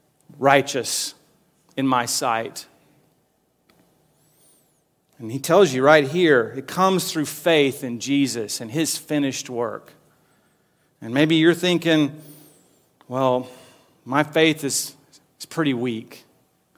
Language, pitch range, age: English, 135-180 Hz, 40-59